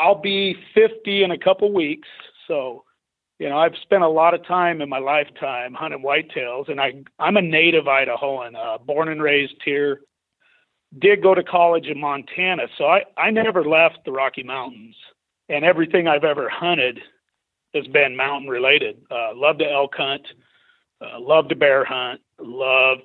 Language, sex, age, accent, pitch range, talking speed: English, male, 40-59, American, 140-180 Hz, 175 wpm